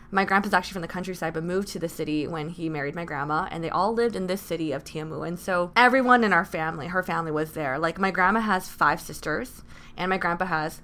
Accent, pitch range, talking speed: American, 165-200 Hz, 250 wpm